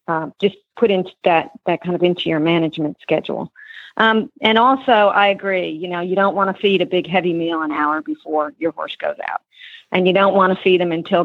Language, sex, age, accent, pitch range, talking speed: English, female, 50-69, American, 165-210 Hz, 230 wpm